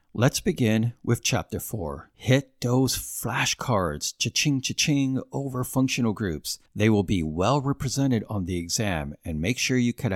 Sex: male